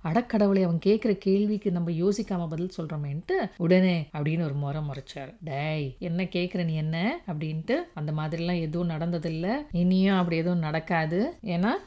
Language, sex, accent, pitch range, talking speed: Tamil, female, native, 165-205 Hz, 145 wpm